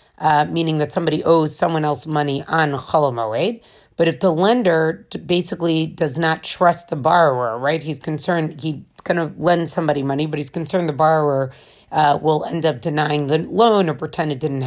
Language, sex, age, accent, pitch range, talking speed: English, female, 30-49, American, 150-180 Hz, 190 wpm